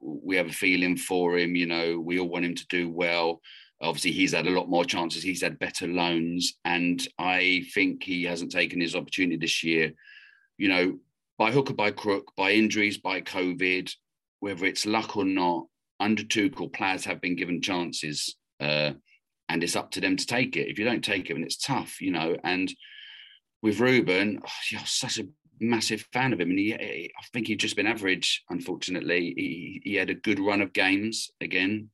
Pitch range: 90-110 Hz